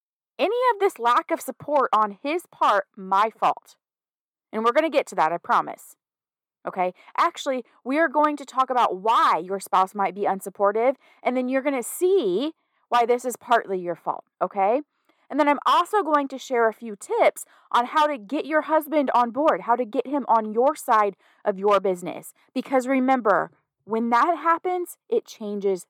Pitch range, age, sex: 210-300 Hz, 30-49, female